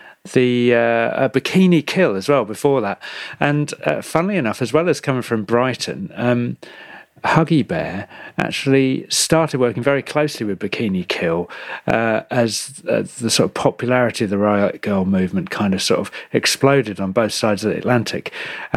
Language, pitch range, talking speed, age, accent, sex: English, 110-140 Hz, 170 wpm, 40-59, British, male